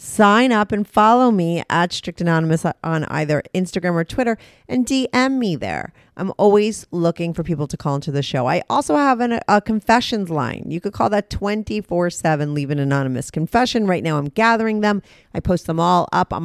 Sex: female